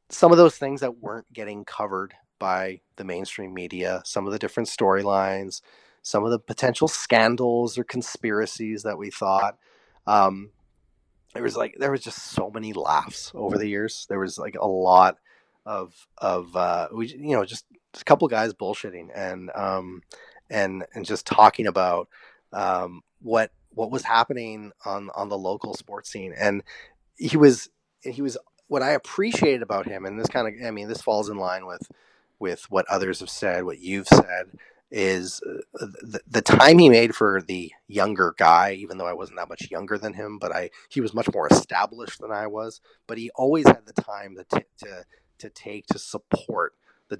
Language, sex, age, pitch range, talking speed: English, male, 30-49, 95-115 Hz, 180 wpm